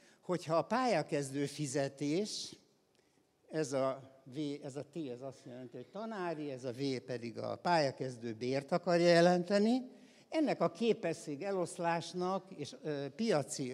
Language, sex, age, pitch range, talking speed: Hungarian, male, 60-79, 130-180 Hz, 135 wpm